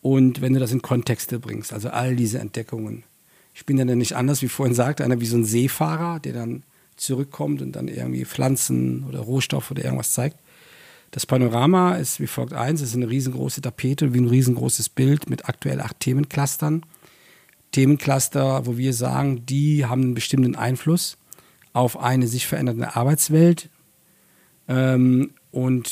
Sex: male